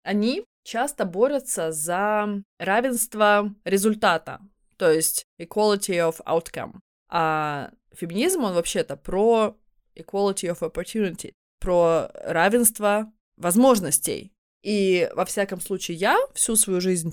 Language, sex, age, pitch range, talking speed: Russian, female, 20-39, 165-210 Hz, 105 wpm